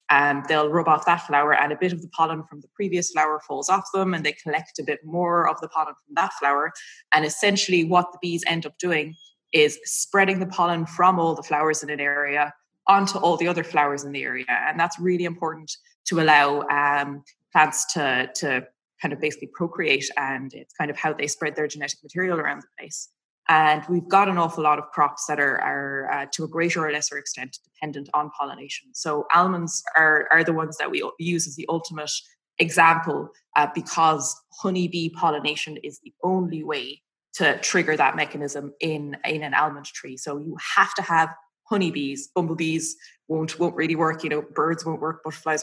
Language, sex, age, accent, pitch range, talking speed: English, female, 20-39, Irish, 150-170 Hz, 200 wpm